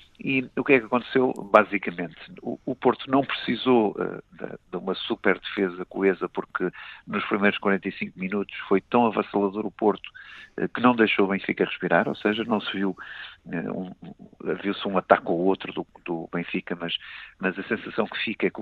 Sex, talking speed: male, 170 wpm